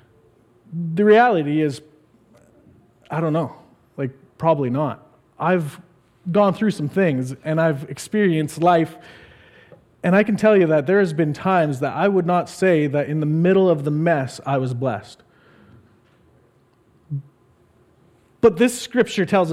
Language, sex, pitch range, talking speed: English, male, 150-200 Hz, 145 wpm